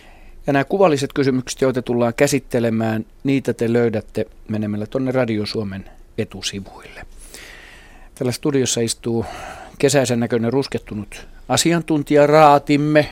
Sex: male